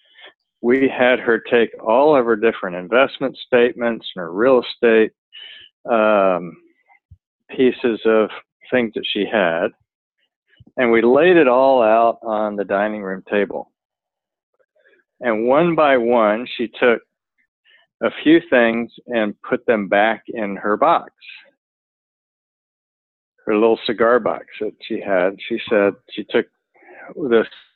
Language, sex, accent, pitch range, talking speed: English, male, American, 100-120 Hz, 130 wpm